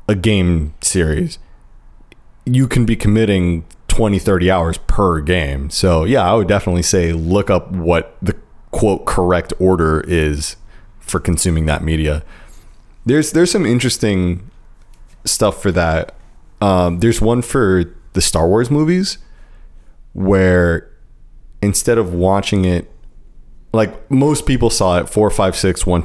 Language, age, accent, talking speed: English, 30-49, American, 135 wpm